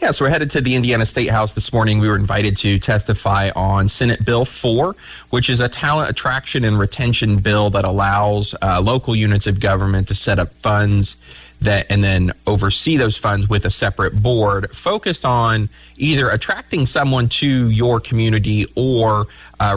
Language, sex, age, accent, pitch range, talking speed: English, male, 30-49, American, 100-120 Hz, 180 wpm